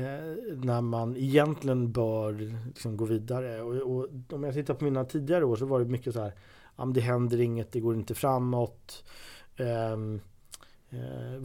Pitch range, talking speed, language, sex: 115-145 Hz, 160 wpm, Swedish, male